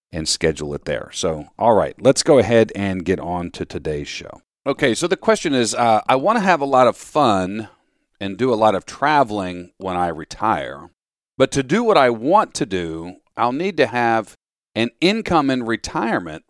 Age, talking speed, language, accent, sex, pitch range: 40-59, 200 wpm, English, American, male, 95-130 Hz